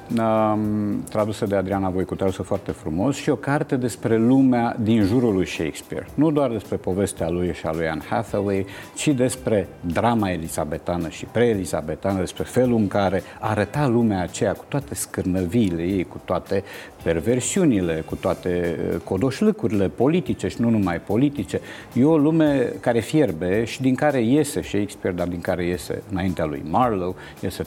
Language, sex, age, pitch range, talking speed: Romanian, male, 50-69, 95-120 Hz, 155 wpm